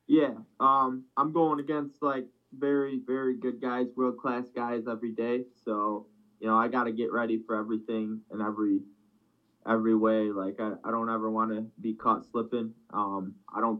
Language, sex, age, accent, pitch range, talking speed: English, male, 20-39, American, 105-120 Hz, 180 wpm